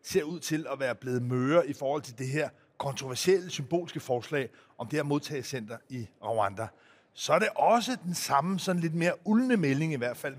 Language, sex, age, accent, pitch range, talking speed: Danish, male, 30-49, native, 145-190 Hz, 200 wpm